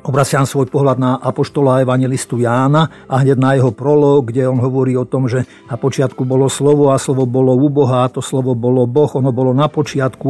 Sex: male